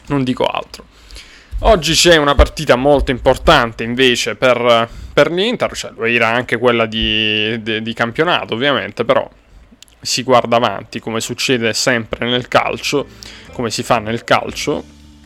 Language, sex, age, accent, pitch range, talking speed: Italian, male, 20-39, native, 105-130 Hz, 140 wpm